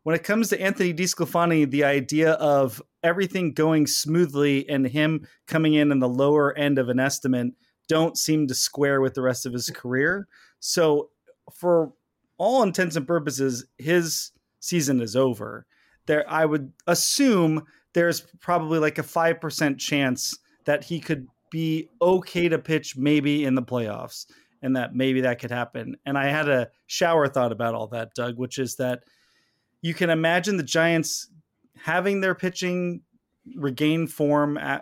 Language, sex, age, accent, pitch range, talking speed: English, male, 30-49, American, 130-165 Hz, 160 wpm